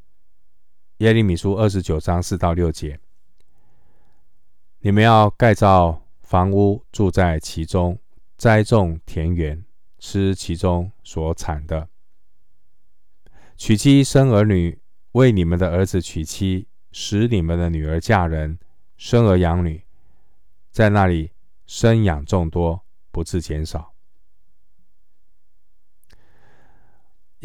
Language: Chinese